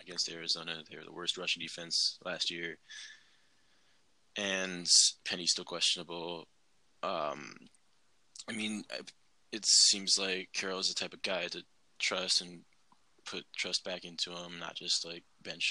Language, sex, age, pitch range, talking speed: English, male, 20-39, 85-95 Hz, 140 wpm